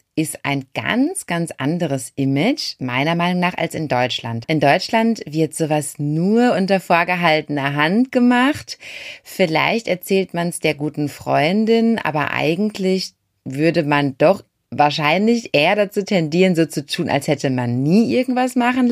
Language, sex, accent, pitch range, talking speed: German, female, German, 135-180 Hz, 145 wpm